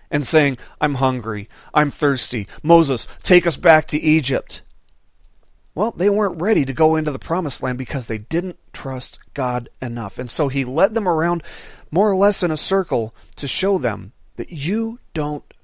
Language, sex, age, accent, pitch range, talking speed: English, male, 40-59, American, 120-170 Hz, 175 wpm